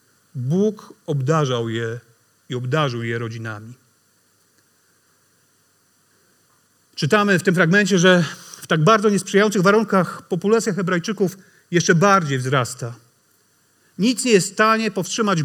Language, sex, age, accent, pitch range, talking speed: Polish, male, 40-59, native, 135-200 Hz, 110 wpm